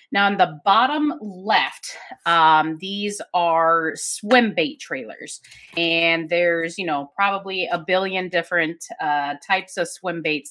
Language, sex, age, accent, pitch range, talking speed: English, female, 30-49, American, 160-215 Hz, 135 wpm